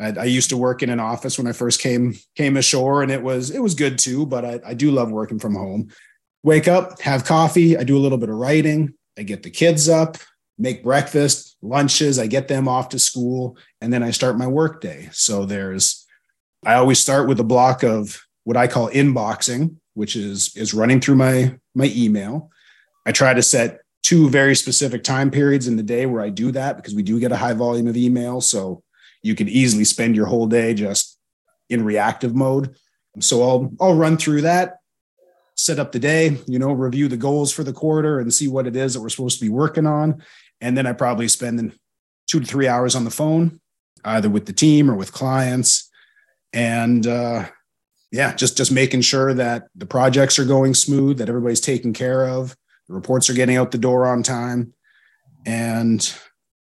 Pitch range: 120-140 Hz